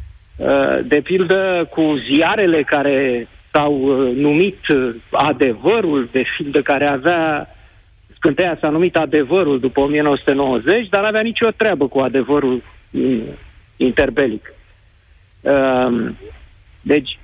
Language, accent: Romanian, native